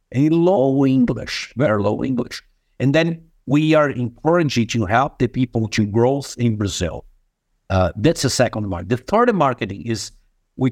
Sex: male